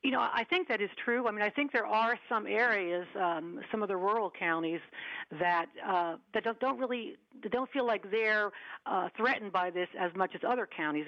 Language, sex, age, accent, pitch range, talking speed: English, female, 50-69, American, 180-225 Hz, 230 wpm